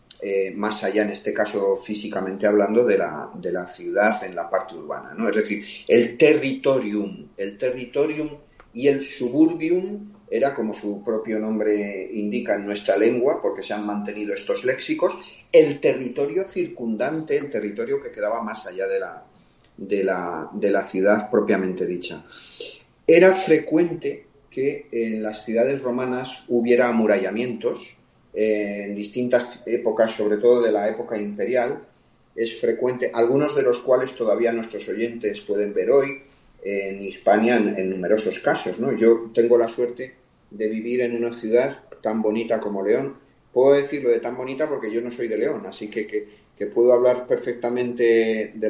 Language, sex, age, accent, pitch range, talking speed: Spanish, male, 40-59, Spanish, 105-140 Hz, 160 wpm